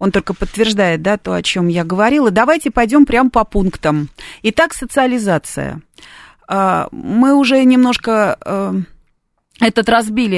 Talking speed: 120 wpm